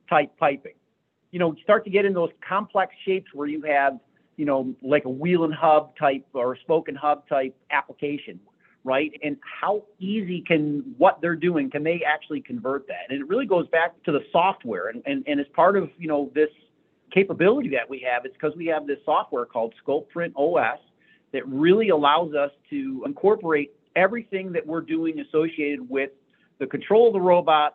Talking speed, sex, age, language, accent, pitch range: 195 wpm, male, 40-59, English, American, 145-190 Hz